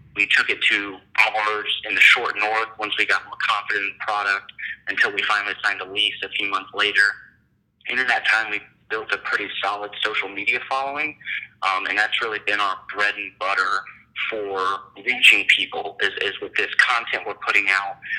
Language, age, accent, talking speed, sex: English, 30-49, American, 195 wpm, male